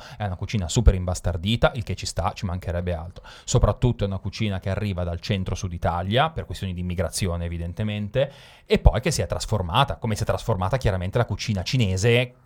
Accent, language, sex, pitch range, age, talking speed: native, Italian, male, 100-125 Hz, 30-49, 195 wpm